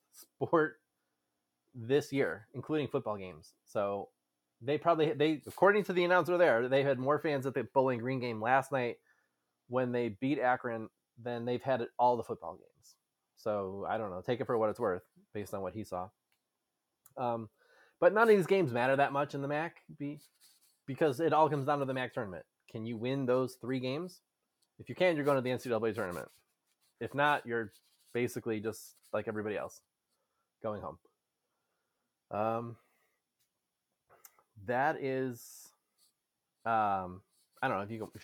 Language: English